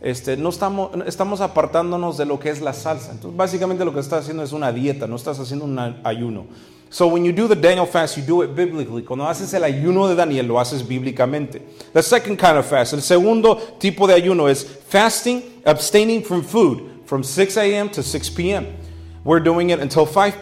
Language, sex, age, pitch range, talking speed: English, male, 40-59, 130-180 Hz, 210 wpm